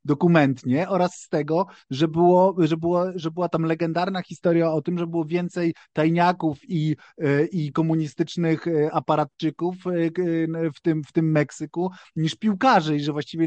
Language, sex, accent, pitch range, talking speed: Polish, male, native, 145-180 Hz, 145 wpm